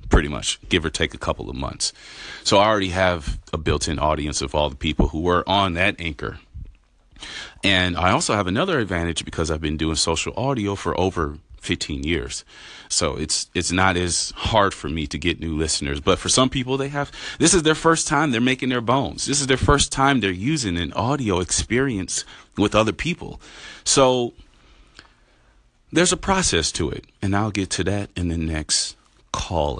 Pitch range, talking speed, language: 80-125 Hz, 195 wpm, English